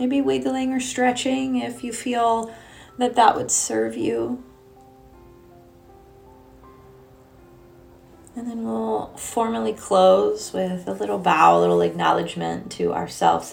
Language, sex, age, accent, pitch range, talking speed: English, female, 30-49, American, 135-195 Hz, 115 wpm